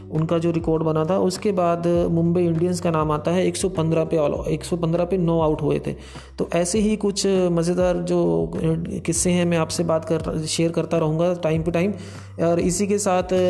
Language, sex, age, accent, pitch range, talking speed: Hindi, male, 20-39, native, 165-180 Hz, 200 wpm